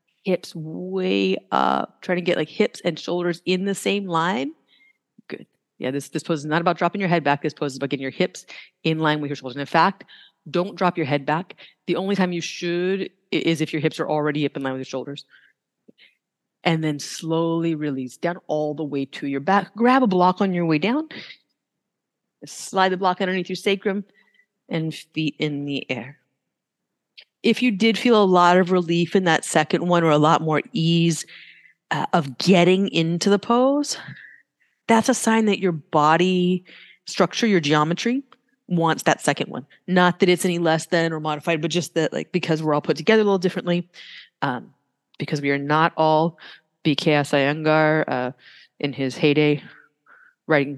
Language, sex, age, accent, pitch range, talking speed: English, female, 30-49, American, 150-185 Hz, 190 wpm